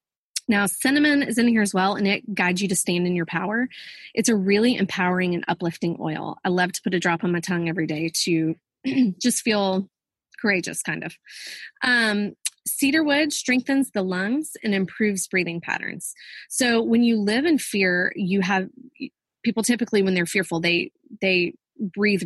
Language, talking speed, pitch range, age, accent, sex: English, 175 wpm, 180-230 Hz, 20-39, American, female